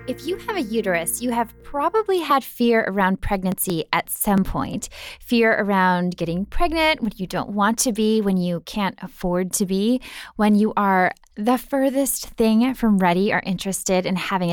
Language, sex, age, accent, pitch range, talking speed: English, female, 10-29, American, 190-255 Hz, 180 wpm